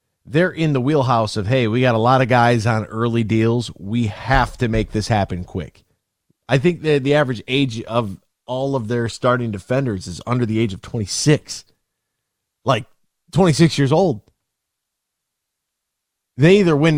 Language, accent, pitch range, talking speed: English, American, 110-140 Hz, 175 wpm